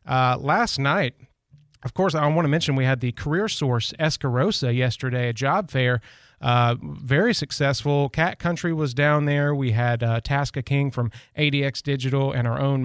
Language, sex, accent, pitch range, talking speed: English, male, American, 125-145 Hz, 180 wpm